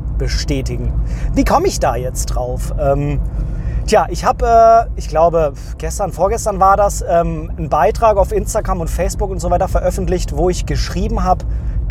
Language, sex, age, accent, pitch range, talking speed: German, male, 30-49, German, 155-195 Hz, 160 wpm